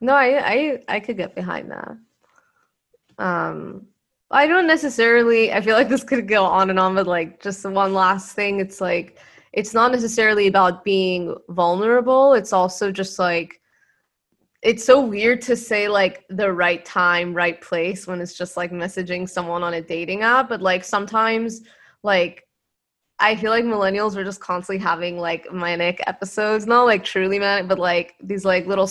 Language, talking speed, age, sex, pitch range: English, 175 wpm, 20-39, female, 180-225 Hz